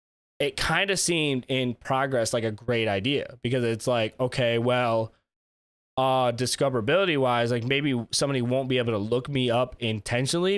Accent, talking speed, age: American, 165 wpm, 20-39